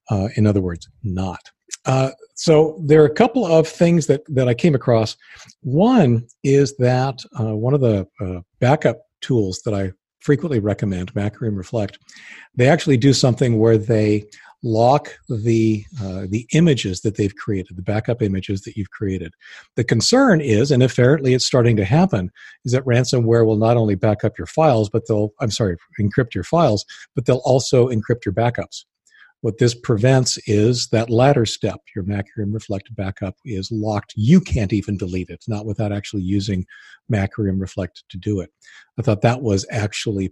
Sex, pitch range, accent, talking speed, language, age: male, 100-135 Hz, American, 175 wpm, English, 50-69